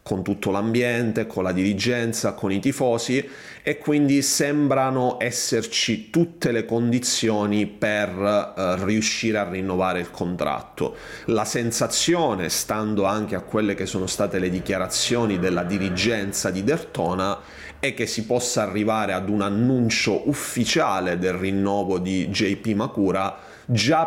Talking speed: 130 wpm